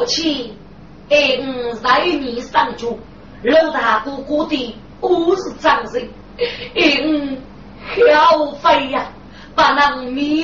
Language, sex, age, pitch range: Chinese, female, 30-49, 255-315 Hz